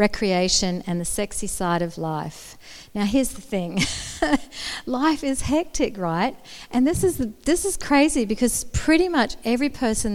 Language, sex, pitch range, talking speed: English, female, 185-255 Hz, 160 wpm